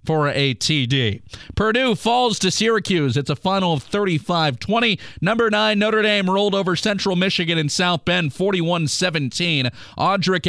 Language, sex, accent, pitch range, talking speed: English, male, American, 150-190 Hz, 150 wpm